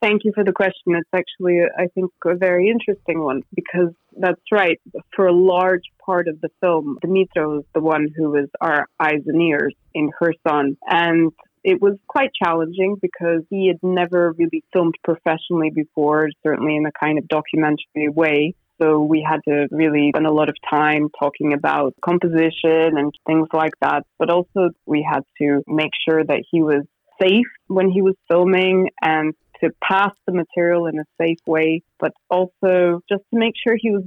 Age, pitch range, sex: 20-39, 155-185 Hz, female